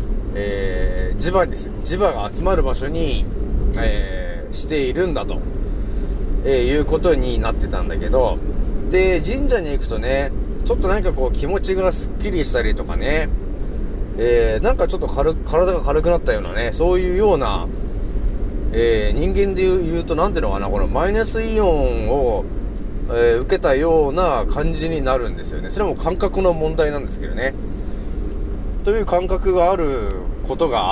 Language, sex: Japanese, male